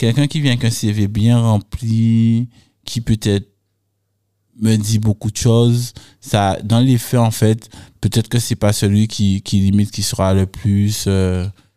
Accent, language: French, French